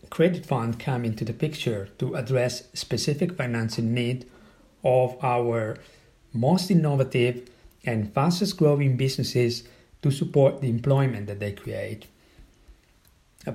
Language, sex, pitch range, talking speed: English, male, 115-150 Hz, 120 wpm